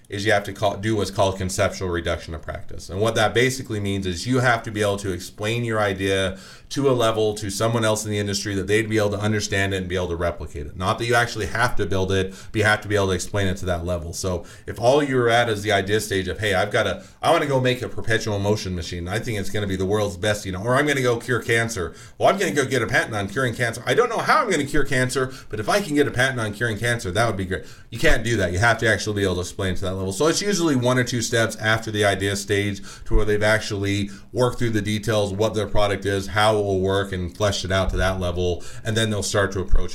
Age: 30-49